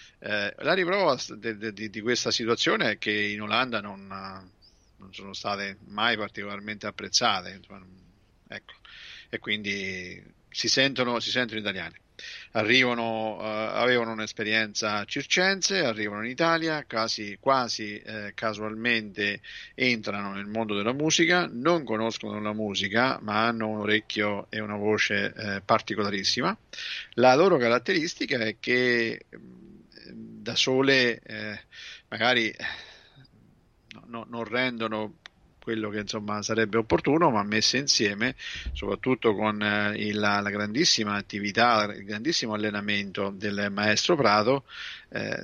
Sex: male